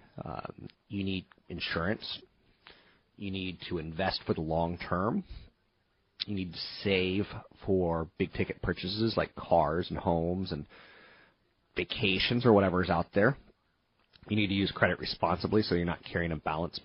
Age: 30-49